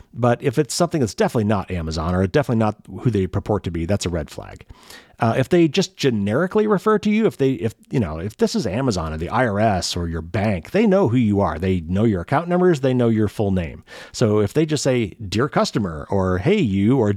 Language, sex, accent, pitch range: English, male, American, 95-140 Hz